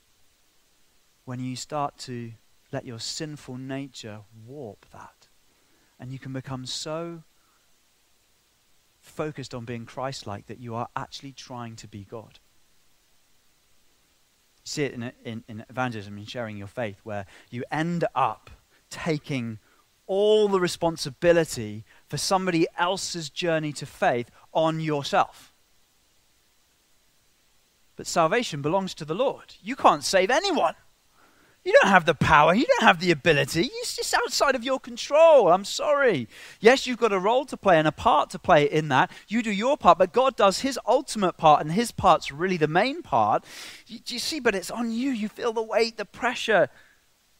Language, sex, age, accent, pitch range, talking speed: English, male, 30-49, British, 125-190 Hz, 160 wpm